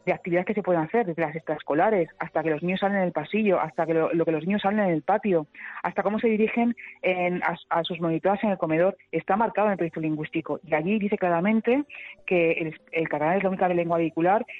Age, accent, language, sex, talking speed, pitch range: 30-49, Spanish, Spanish, female, 245 wpm, 165-205 Hz